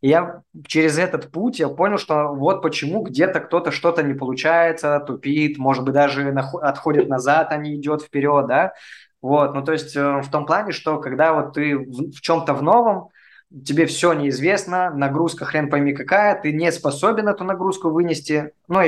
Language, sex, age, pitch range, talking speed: Russian, male, 20-39, 135-155 Hz, 175 wpm